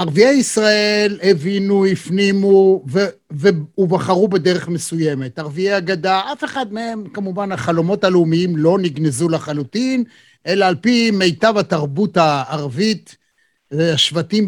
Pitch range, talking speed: 180-230 Hz, 105 wpm